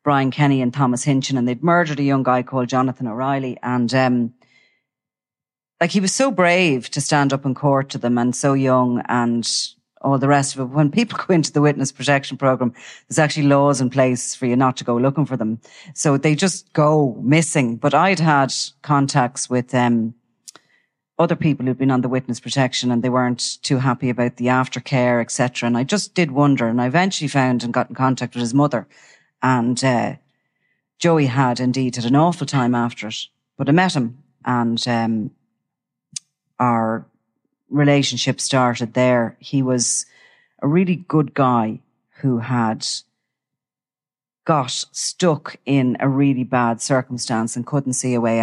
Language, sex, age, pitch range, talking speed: English, female, 30-49, 120-140 Hz, 175 wpm